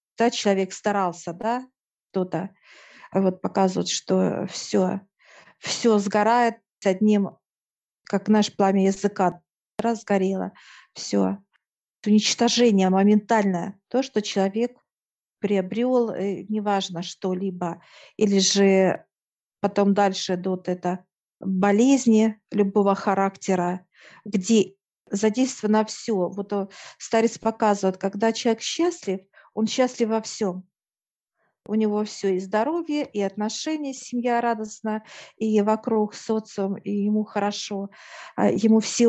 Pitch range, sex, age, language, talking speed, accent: 195-225 Hz, female, 50-69, Russian, 100 wpm, native